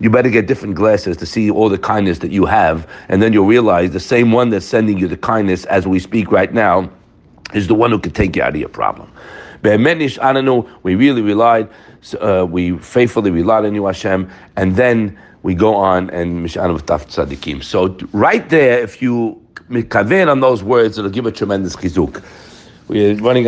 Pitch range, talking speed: 110-155 Hz, 185 wpm